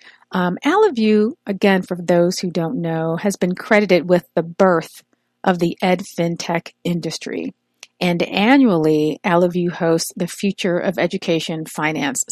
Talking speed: 135 wpm